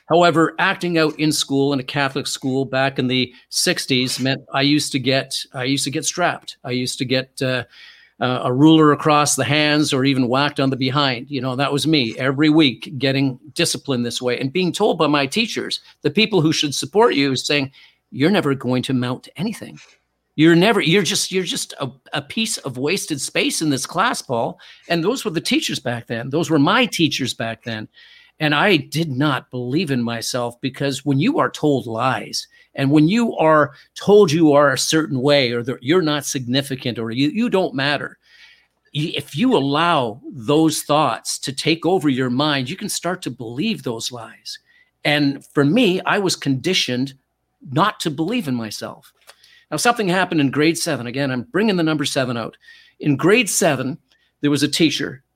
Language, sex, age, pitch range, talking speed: English, male, 50-69, 130-165 Hz, 195 wpm